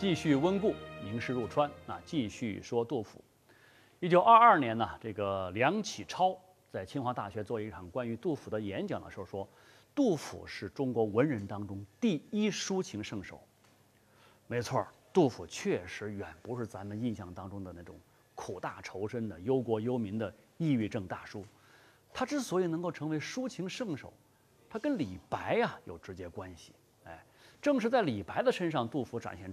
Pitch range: 100-140 Hz